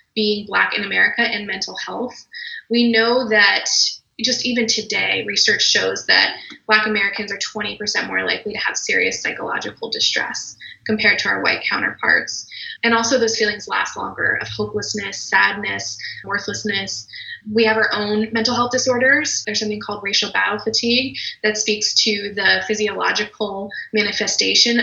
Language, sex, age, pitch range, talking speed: English, female, 20-39, 210-235 Hz, 145 wpm